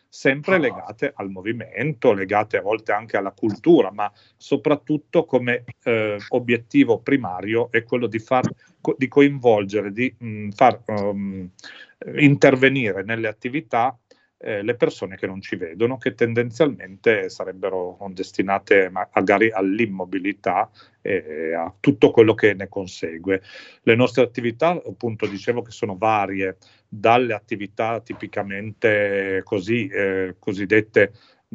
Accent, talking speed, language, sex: native, 120 wpm, Italian, male